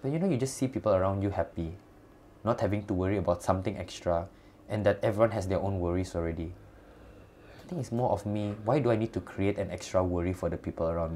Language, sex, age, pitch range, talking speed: Malay, male, 20-39, 85-100 Hz, 235 wpm